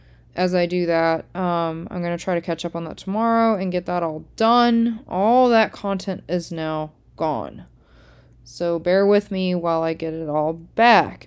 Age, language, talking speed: 20-39, English, 185 wpm